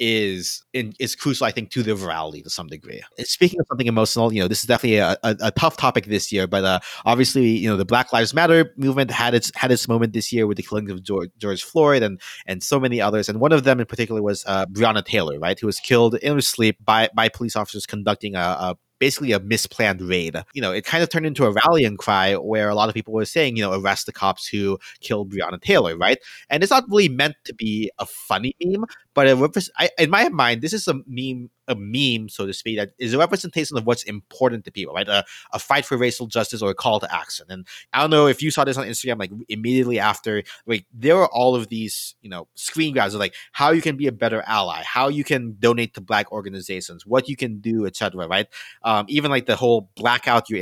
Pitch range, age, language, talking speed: 105-135 Hz, 30-49, English, 250 wpm